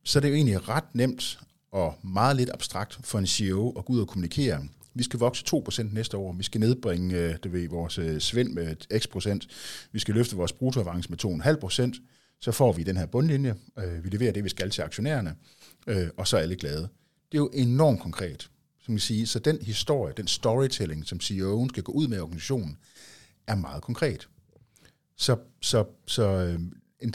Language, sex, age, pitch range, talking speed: Danish, male, 50-69, 90-125 Hz, 195 wpm